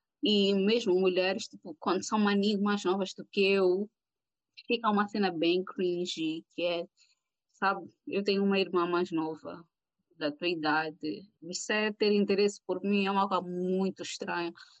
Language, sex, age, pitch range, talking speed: Portuguese, female, 20-39, 180-210 Hz, 160 wpm